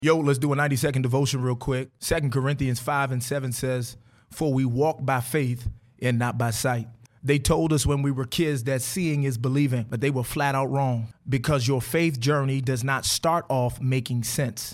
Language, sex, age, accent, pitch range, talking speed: English, male, 30-49, American, 125-145 Hz, 205 wpm